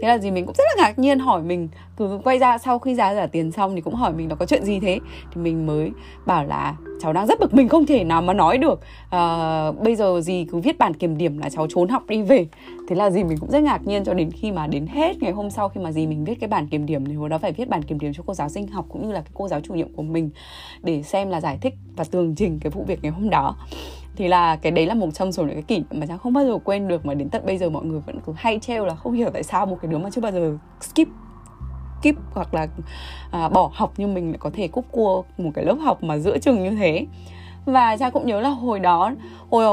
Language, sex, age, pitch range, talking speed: Vietnamese, female, 20-39, 155-220 Hz, 295 wpm